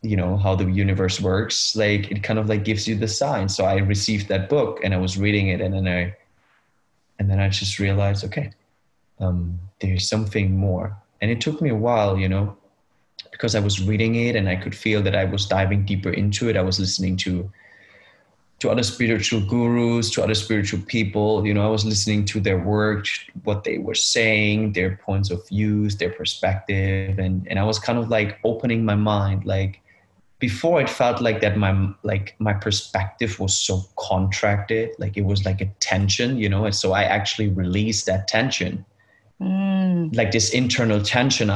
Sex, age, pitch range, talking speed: male, 20-39, 95-110 Hz, 195 wpm